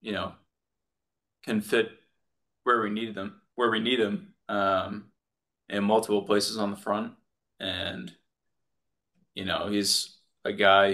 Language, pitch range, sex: English, 95-105 Hz, male